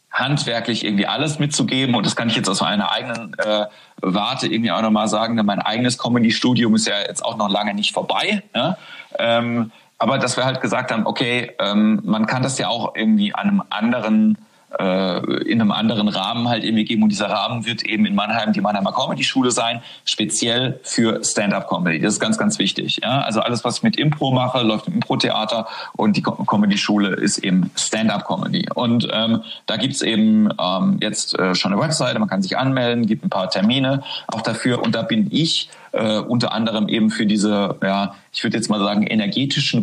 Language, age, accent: German, 40-59, German